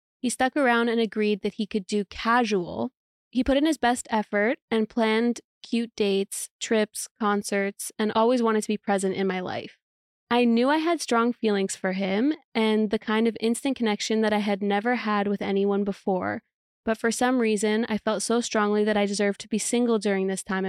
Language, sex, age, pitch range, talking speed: English, female, 20-39, 200-235 Hz, 205 wpm